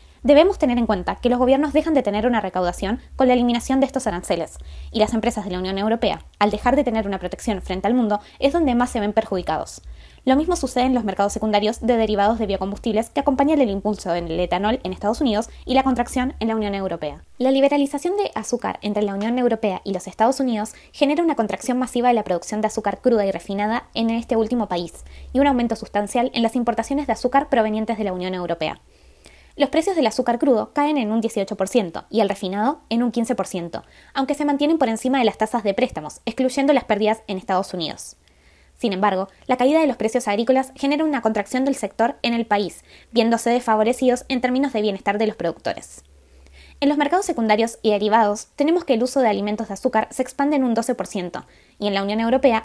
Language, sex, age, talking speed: Spanish, female, 20-39, 215 wpm